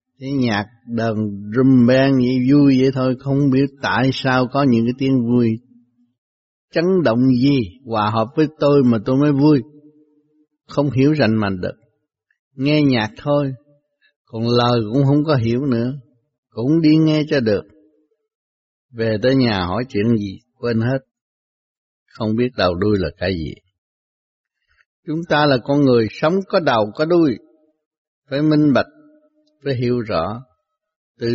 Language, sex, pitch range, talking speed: Vietnamese, male, 110-150 Hz, 155 wpm